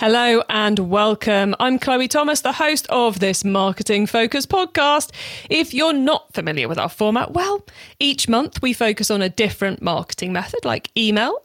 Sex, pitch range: female, 195-285 Hz